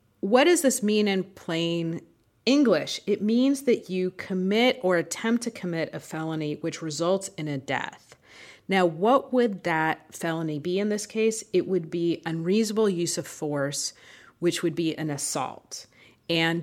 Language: English